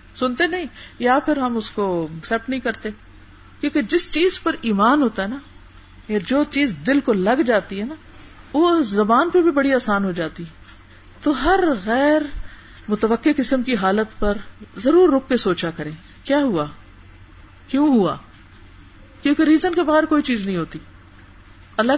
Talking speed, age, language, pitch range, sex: 165 wpm, 50-69, Urdu, 200-295 Hz, female